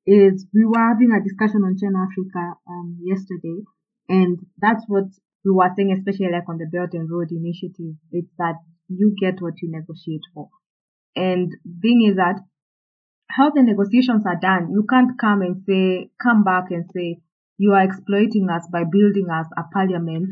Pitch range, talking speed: 175-200 Hz, 180 wpm